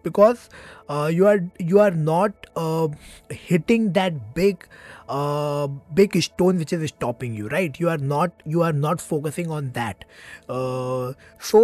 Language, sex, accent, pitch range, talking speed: English, male, Indian, 135-175 Hz, 155 wpm